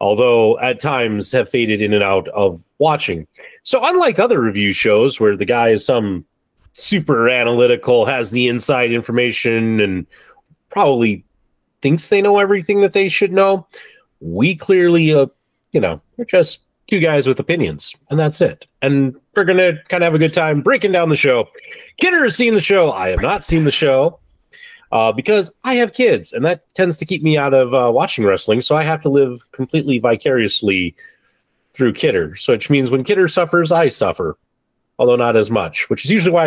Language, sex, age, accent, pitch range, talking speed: English, male, 30-49, American, 125-195 Hz, 190 wpm